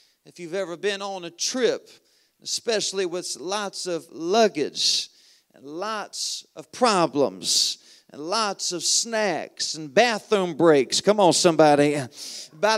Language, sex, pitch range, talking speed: English, male, 180-225 Hz, 125 wpm